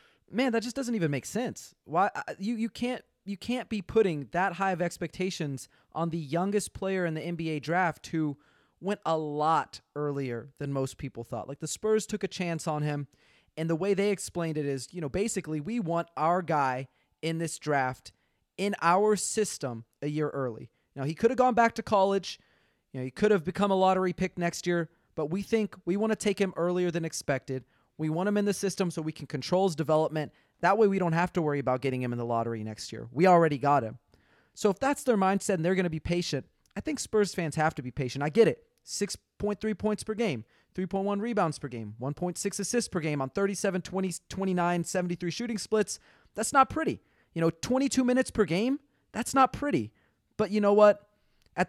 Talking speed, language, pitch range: 215 wpm, English, 150-205 Hz